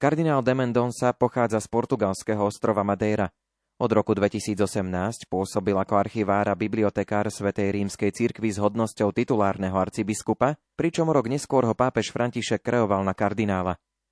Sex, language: male, Slovak